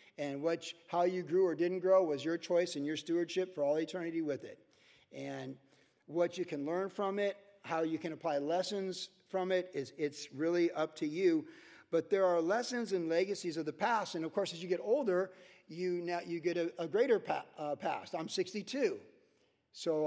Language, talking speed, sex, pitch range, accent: English, 205 wpm, male, 160-210 Hz, American